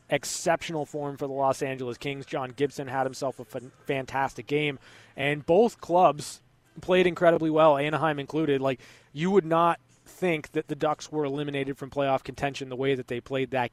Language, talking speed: English, 180 wpm